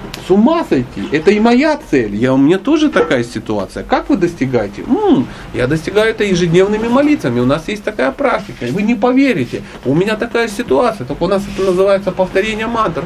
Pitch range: 135-210 Hz